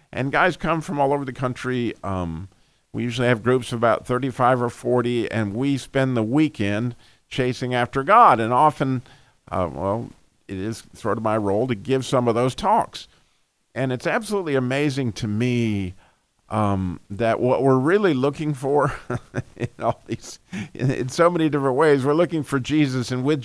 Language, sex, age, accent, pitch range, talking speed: English, male, 50-69, American, 110-145 Hz, 180 wpm